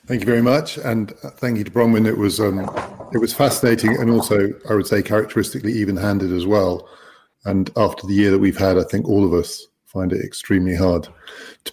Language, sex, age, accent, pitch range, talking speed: English, male, 40-59, British, 95-115 Hz, 210 wpm